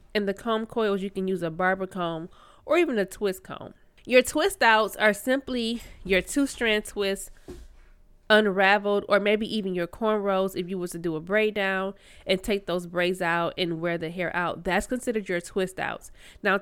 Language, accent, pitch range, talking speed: English, American, 180-215 Hz, 195 wpm